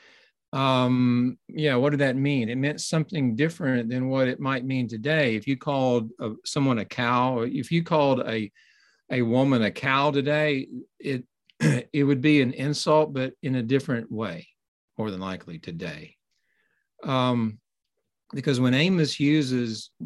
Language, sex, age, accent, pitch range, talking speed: English, male, 50-69, American, 120-145 Hz, 160 wpm